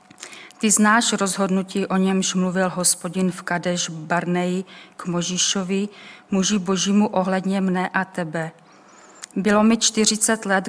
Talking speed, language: 125 wpm, Czech